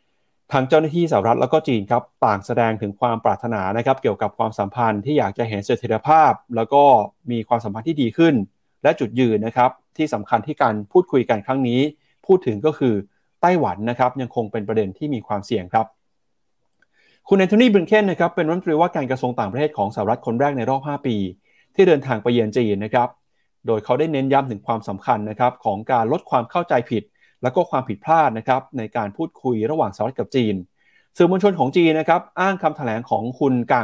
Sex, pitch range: male, 115-155 Hz